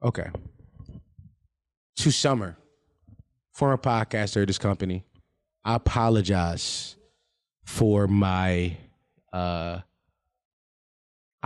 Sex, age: male, 20-39